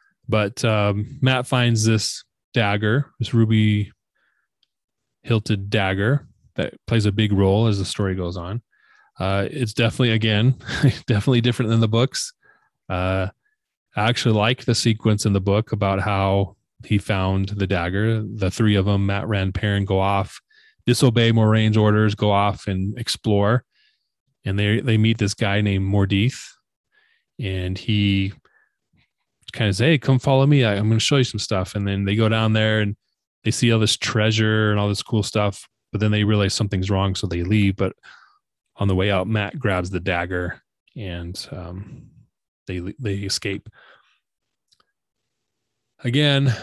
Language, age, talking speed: English, 20-39, 160 wpm